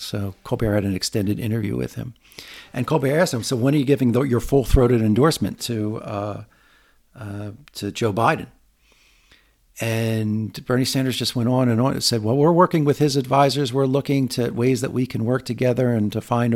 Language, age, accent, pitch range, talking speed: English, 50-69, American, 110-135 Hz, 205 wpm